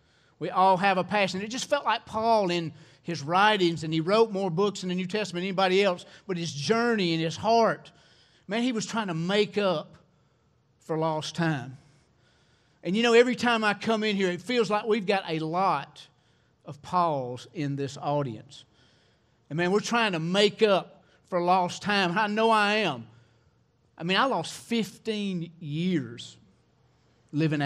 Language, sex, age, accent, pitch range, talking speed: English, male, 40-59, American, 140-195 Hz, 180 wpm